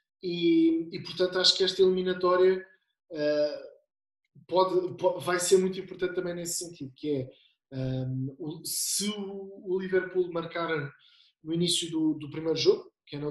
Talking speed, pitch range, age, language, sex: 160 wpm, 150-185 Hz, 20-39, Portuguese, male